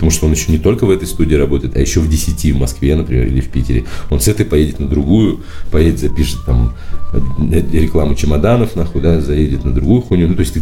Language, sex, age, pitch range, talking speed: Russian, male, 40-59, 75-95 Hz, 225 wpm